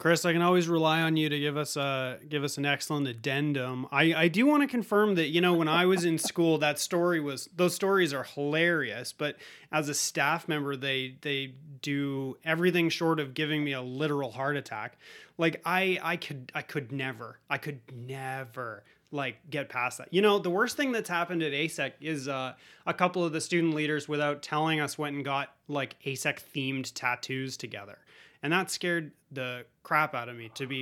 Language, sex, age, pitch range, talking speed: English, male, 30-49, 140-170 Hz, 205 wpm